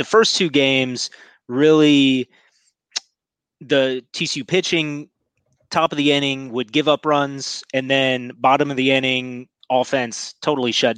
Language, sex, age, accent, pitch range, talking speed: English, male, 30-49, American, 120-140 Hz, 135 wpm